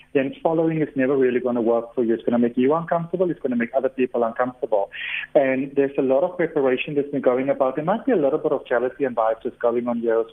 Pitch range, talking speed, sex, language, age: 130-160 Hz, 275 wpm, male, English, 40-59